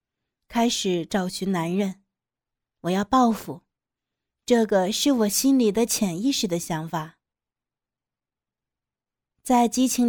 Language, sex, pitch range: Chinese, female, 190-250 Hz